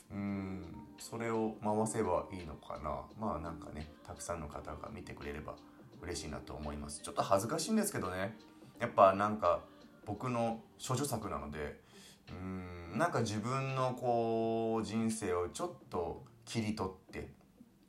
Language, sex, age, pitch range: Japanese, male, 30-49, 85-115 Hz